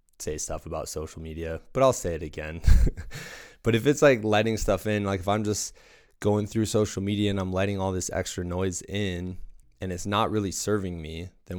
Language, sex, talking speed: English, male, 205 wpm